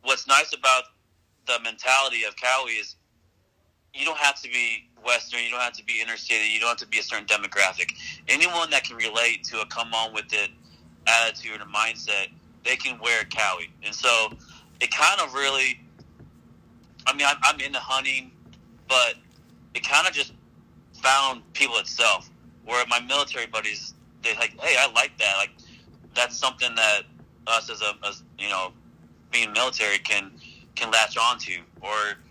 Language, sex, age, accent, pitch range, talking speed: English, male, 30-49, American, 80-115 Hz, 170 wpm